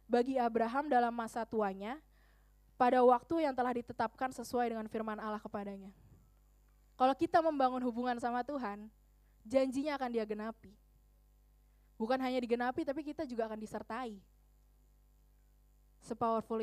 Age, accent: 20-39, native